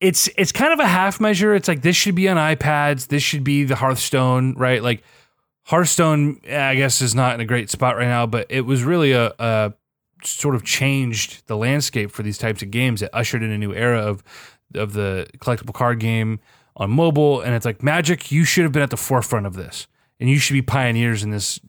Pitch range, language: 115-145 Hz, English